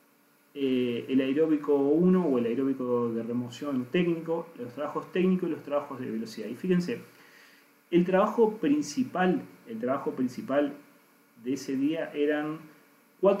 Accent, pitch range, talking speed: Argentinian, 135-185 Hz, 140 wpm